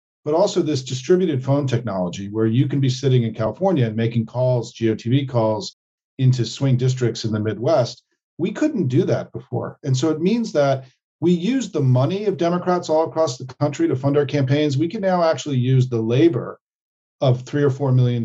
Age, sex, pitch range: 40-59, male, 120-160 Hz